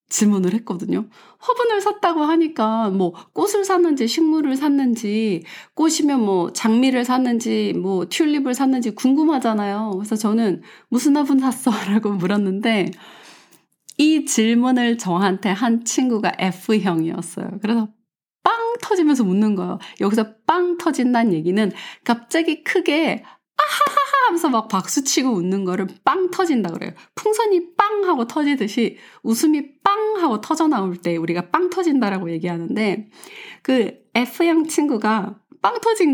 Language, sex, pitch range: Korean, female, 195-295 Hz